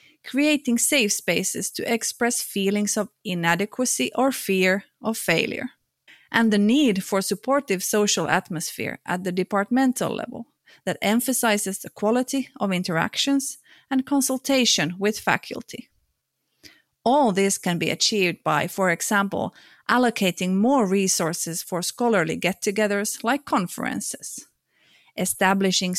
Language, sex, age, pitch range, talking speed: Finnish, female, 30-49, 180-235 Hz, 115 wpm